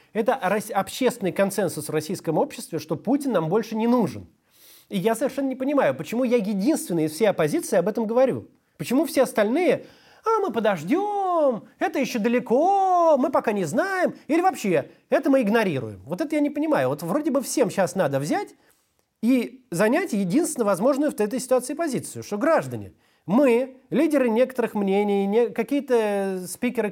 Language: Russian